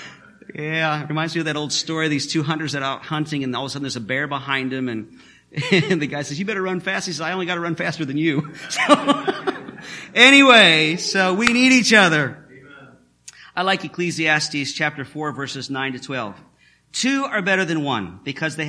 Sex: male